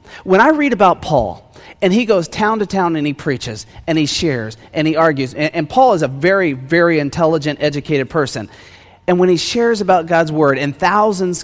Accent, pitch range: American, 140-195 Hz